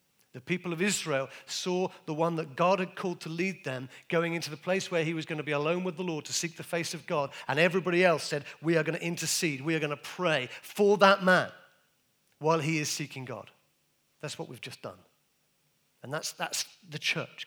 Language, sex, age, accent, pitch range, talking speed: English, male, 40-59, British, 135-185 Hz, 225 wpm